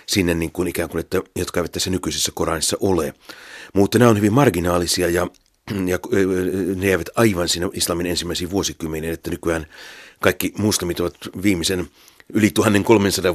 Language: Finnish